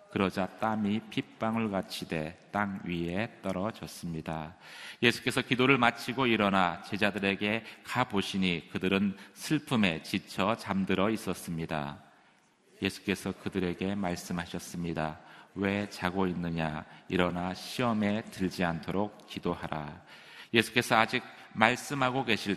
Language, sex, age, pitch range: Korean, male, 40-59, 90-115 Hz